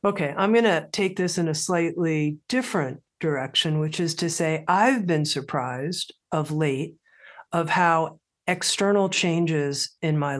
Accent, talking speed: American, 150 wpm